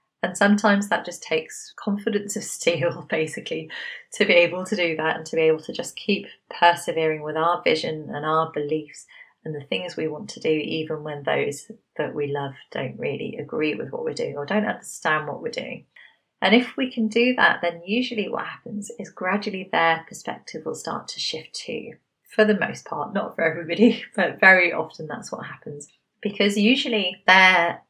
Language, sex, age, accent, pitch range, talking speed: English, female, 30-49, British, 155-215 Hz, 195 wpm